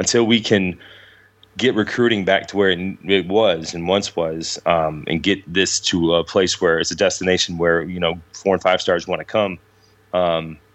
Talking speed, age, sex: 200 wpm, 30-49, male